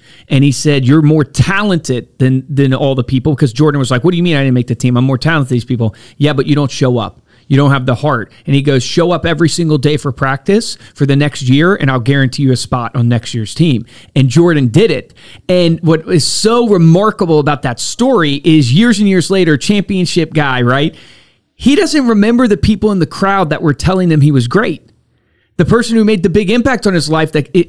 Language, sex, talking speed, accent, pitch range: English, male, 240 wpm, American, 135-185 Hz